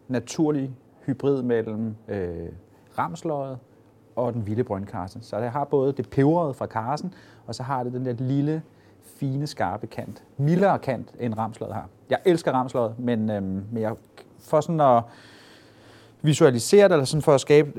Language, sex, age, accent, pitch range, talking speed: Danish, male, 30-49, native, 110-140 Hz, 165 wpm